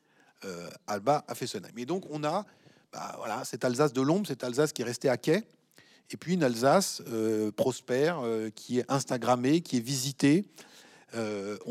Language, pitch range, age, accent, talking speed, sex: French, 120-155 Hz, 40-59, French, 185 wpm, male